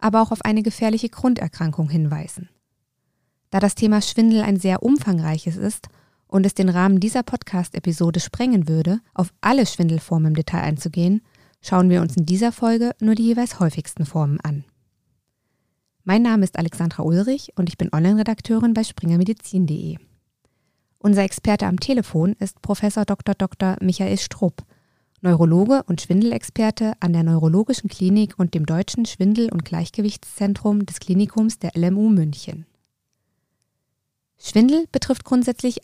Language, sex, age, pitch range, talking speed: German, female, 20-39, 160-220 Hz, 140 wpm